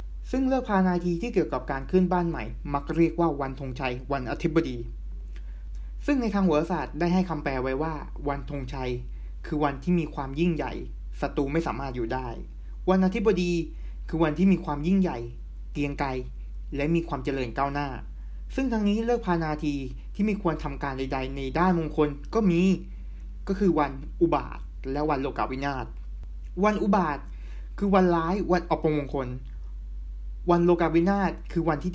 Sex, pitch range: male, 135-180 Hz